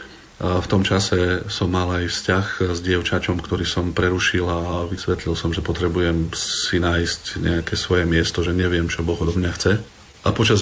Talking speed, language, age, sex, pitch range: 175 wpm, Slovak, 40-59, male, 85-95 Hz